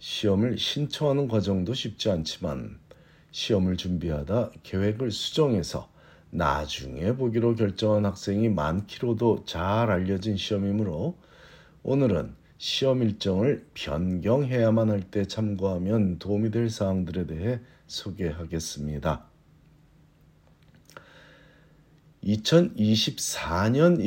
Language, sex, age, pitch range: Korean, male, 50-69, 90-115 Hz